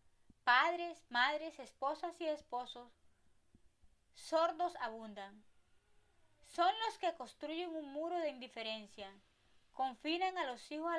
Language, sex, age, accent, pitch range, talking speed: Spanish, female, 30-49, American, 230-320 Hz, 110 wpm